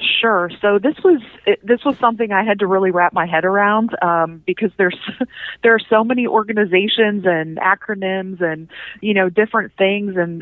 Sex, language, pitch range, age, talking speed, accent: female, English, 170-205 Hz, 30-49, 180 wpm, American